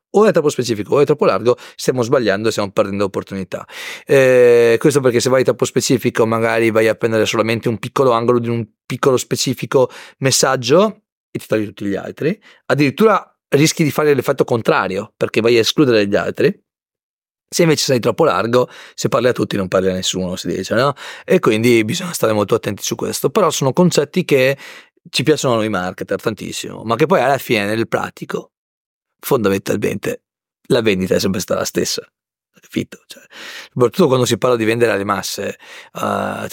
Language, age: Italian, 30-49